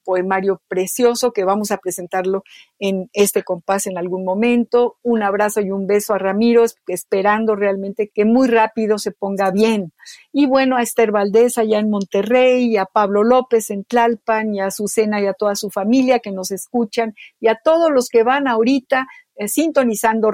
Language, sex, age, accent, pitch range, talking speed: Spanish, female, 50-69, Mexican, 200-245 Hz, 180 wpm